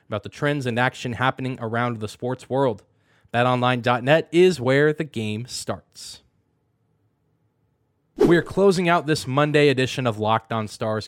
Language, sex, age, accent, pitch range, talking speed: English, male, 20-39, American, 115-155 Hz, 145 wpm